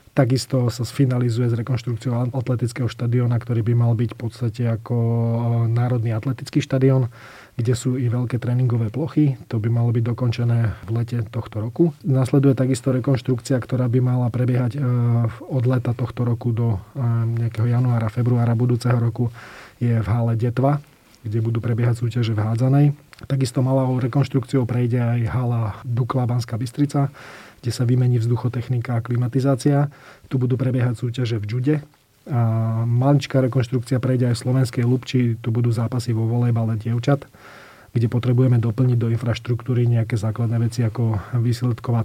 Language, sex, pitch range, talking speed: Slovak, male, 115-130 Hz, 145 wpm